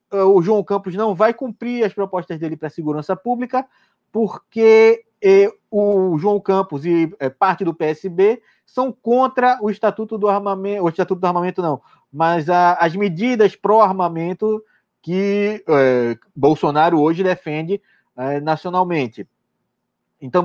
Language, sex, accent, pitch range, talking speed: Portuguese, male, Brazilian, 160-215 Hz, 145 wpm